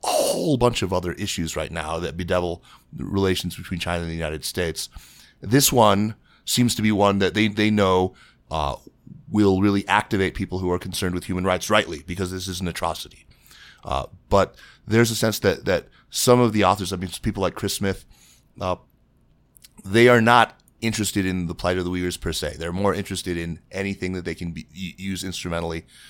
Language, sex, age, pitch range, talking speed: English, male, 30-49, 90-105 Hz, 195 wpm